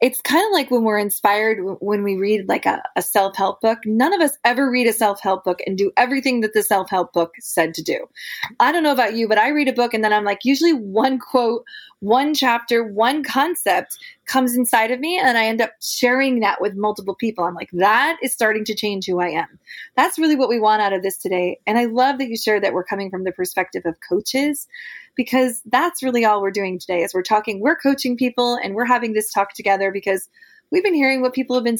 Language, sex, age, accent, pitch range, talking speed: English, female, 20-39, American, 205-275 Hz, 245 wpm